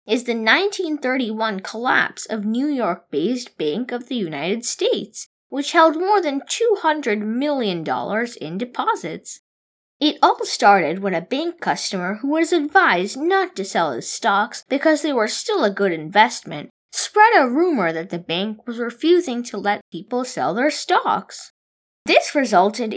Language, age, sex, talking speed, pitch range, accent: English, 20-39, female, 150 wpm, 210-320 Hz, American